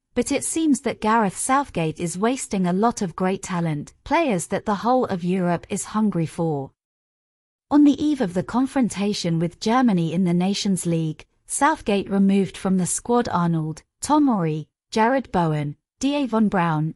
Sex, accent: female, British